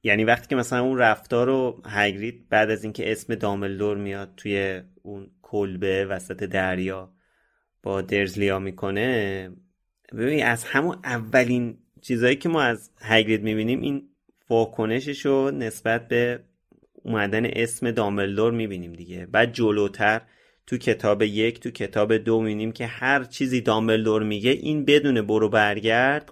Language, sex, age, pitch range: Persian, male, 30-49, 95-120 Hz